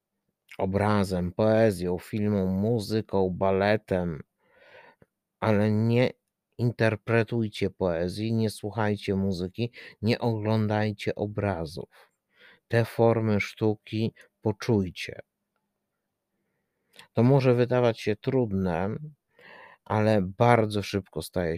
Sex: male